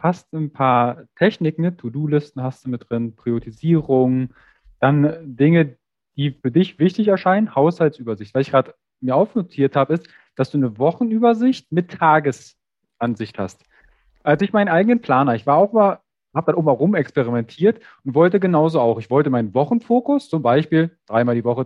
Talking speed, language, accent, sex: 165 wpm, German, German, male